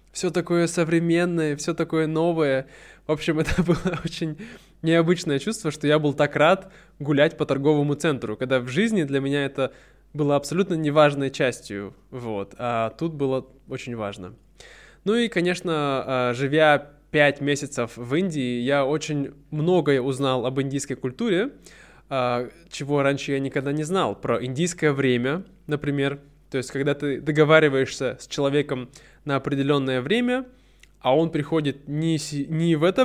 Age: 20-39